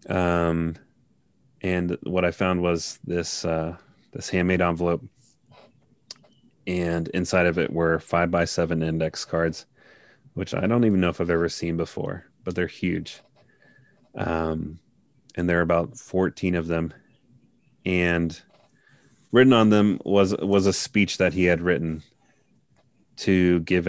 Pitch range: 85-95 Hz